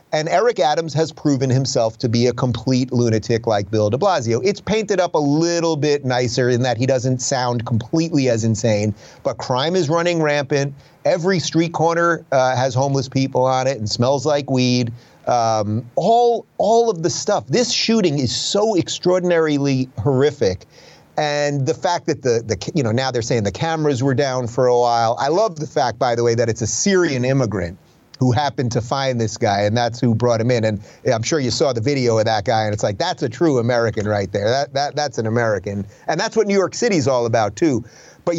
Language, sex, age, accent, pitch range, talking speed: English, male, 30-49, American, 120-160 Hz, 215 wpm